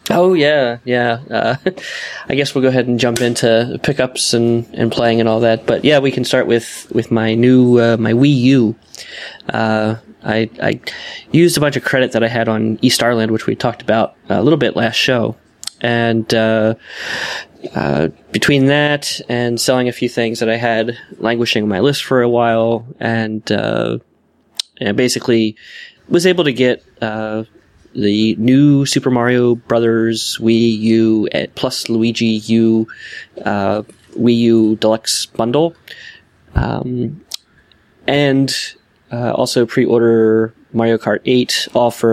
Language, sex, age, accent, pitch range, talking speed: English, male, 20-39, American, 110-130 Hz, 155 wpm